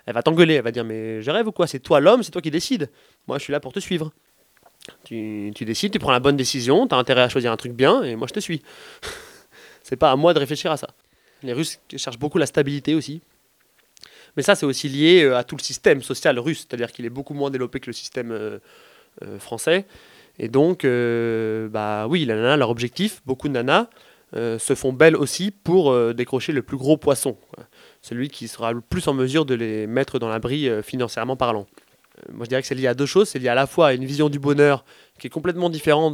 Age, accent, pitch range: 20-39, French, 120-150 Hz